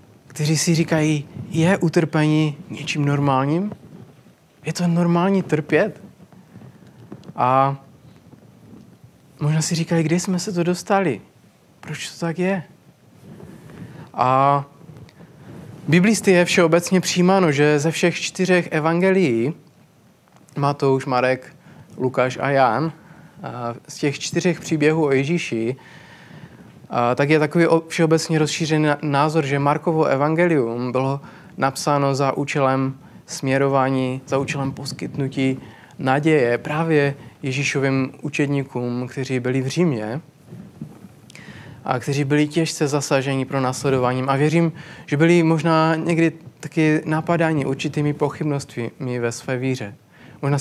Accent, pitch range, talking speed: native, 135-165 Hz, 110 wpm